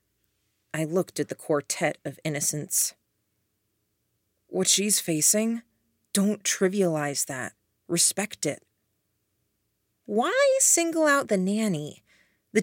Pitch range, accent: 150-200 Hz, American